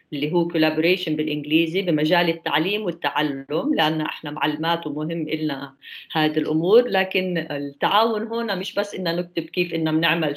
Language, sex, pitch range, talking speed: English, female, 155-190 Hz, 140 wpm